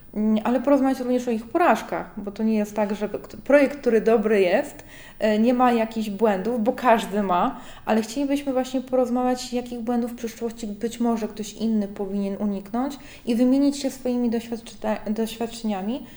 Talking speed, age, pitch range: 160 wpm, 20-39, 205-240 Hz